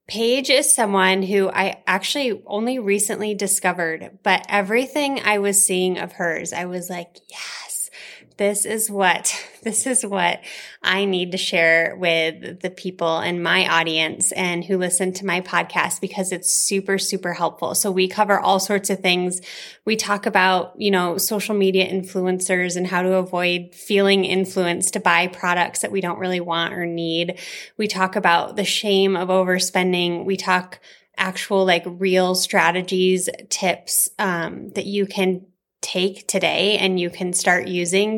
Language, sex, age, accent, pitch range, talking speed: English, female, 20-39, American, 180-205 Hz, 160 wpm